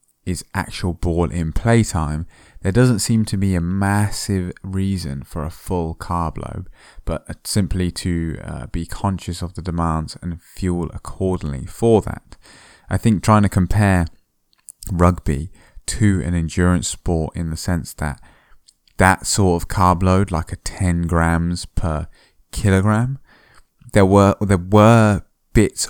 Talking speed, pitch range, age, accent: 140 wpm, 80-100 Hz, 20-39, British